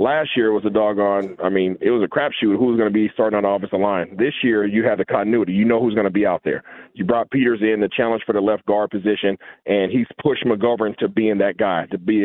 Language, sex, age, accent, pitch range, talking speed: English, male, 40-59, American, 110-135 Hz, 280 wpm